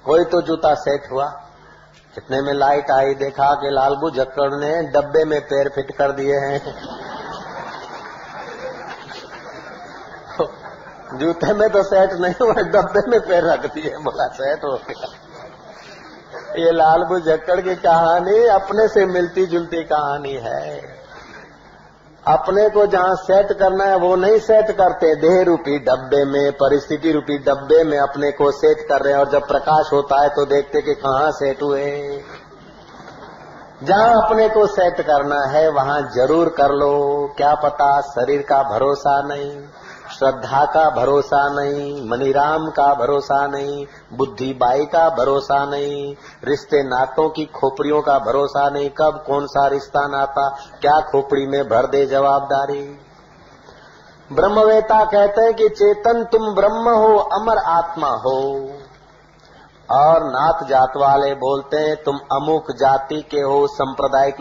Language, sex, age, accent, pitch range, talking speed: Hindi, male, 50-69, native, 140-165 Hz, 140 wpm